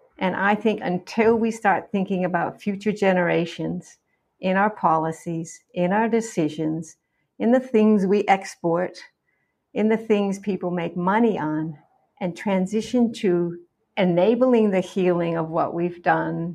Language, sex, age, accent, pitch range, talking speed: English, female, 60-79, American, 175-215 Hz, 140 wpm